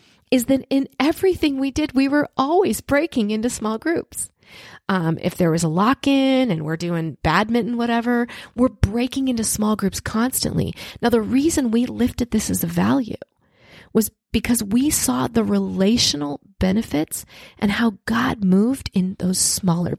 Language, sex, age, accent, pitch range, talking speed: English, female, 30-49, American, 200-260 Hz, 160 wpm